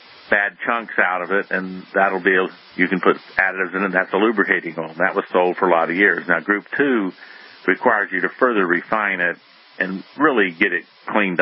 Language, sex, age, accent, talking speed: English, male, 50-69, American, 210 wpm